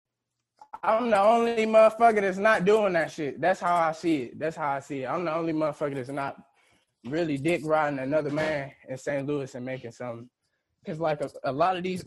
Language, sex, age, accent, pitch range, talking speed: English, male, 20-39, American, 140-175 Hz, 215 wpm